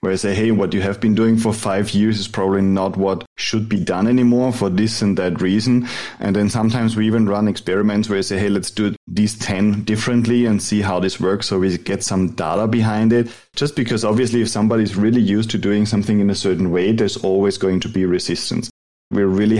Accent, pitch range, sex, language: German, 100-115 Hz, male, English